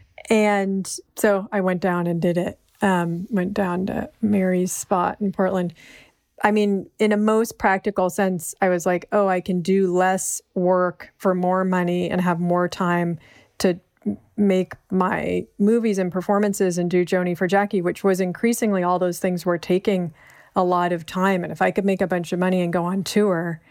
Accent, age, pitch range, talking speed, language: American, 40-59, 180-210 Hz, 190 wpm, English